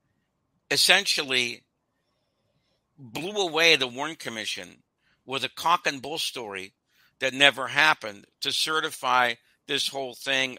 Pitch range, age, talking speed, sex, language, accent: 110-135 Hz, 60-79, 115 wpm, male, English, American